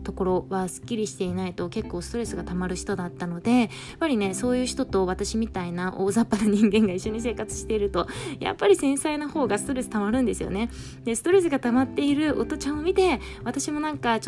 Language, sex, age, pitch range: Japanese, female, 20-39, 190-250 Hz